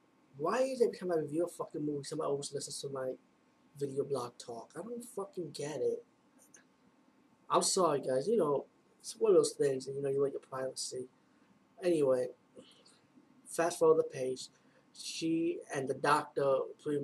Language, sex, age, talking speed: English, male, 20-39, 175 wpm